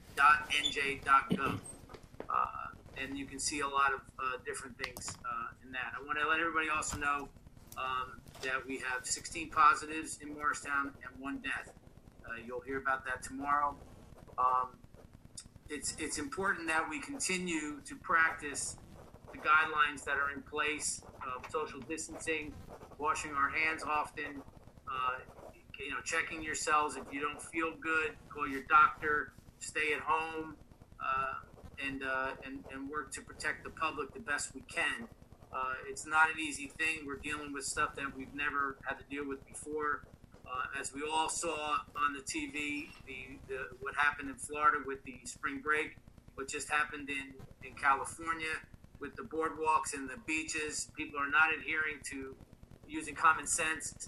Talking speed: 165 wpm